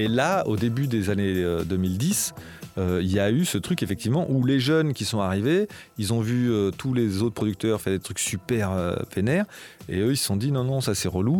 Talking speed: 235 wpm